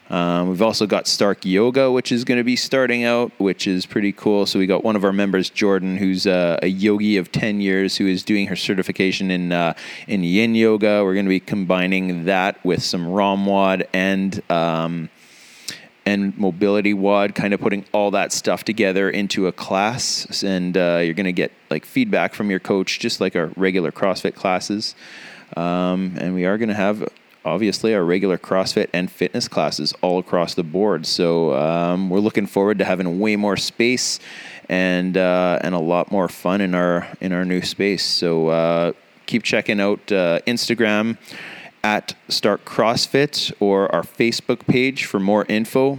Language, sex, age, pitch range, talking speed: English, male, 20-39, 90-105 Hz, 185 wpm